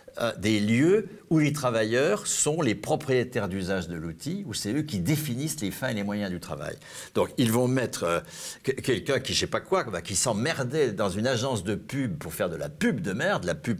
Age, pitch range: 60-79, 90-135 Hz